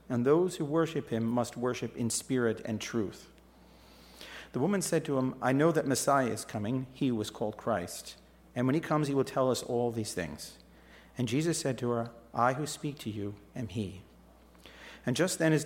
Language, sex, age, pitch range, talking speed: English, male, 50-69, 110-140 Hz, 205 wpm